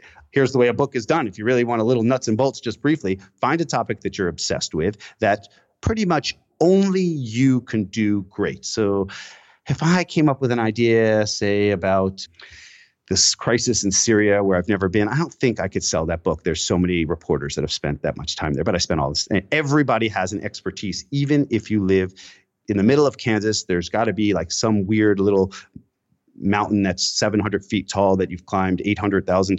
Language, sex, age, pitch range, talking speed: English, male, 30-49, 95-140 Hz, 215 wpm